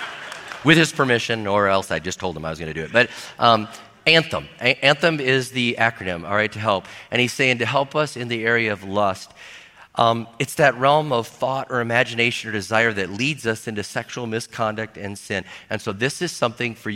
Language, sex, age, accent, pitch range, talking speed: English, male, 40-59, American, 115-170 Hz, 220 wpm